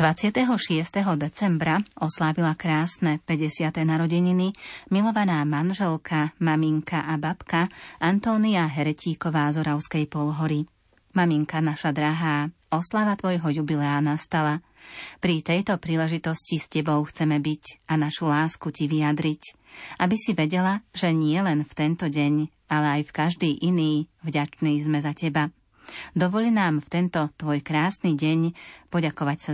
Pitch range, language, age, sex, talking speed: 150-170 Hz, Slovak, 30-49, female, 125 wpm